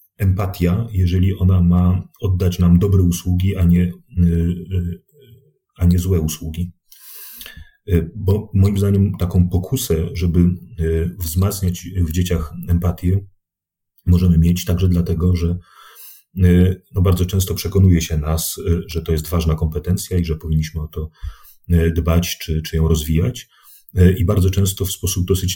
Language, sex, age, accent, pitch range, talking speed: Polish, male, 30-49, native, 85-95 Hz, 130 wpm